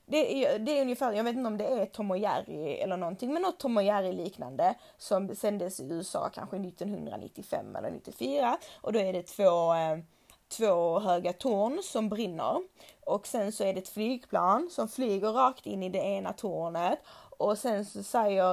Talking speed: 190 wpm